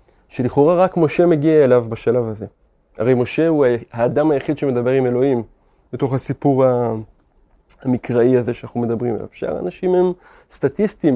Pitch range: 120-150 Hz